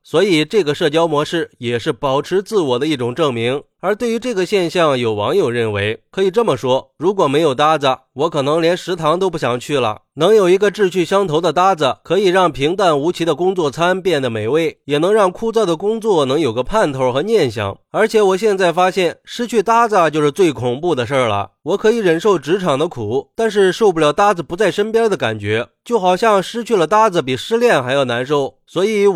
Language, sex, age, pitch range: Chinese, male, 30-49, 140-195 Hz